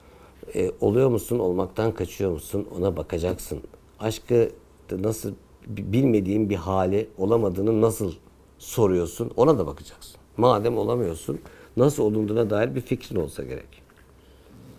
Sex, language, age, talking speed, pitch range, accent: male, Turkish, 60-79, 115 wpm, 85-125 Hz, native